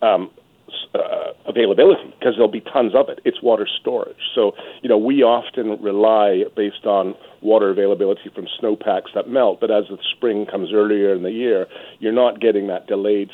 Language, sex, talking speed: English, male, 185 wpm